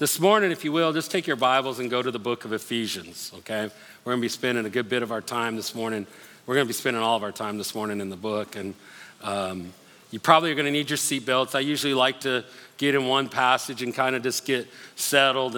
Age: 50-69